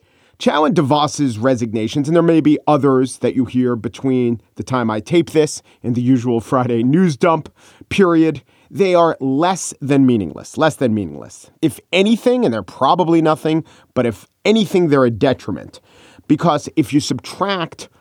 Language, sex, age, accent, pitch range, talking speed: English, male, 40-59, American, 120-155 Hz, 165 wpm